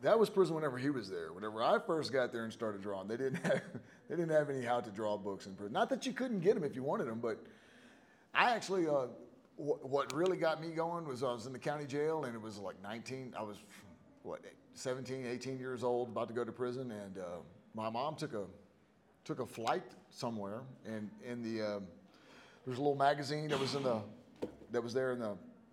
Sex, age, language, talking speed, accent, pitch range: male, 30-49, English, 230 wpm, American, 115-155 Hz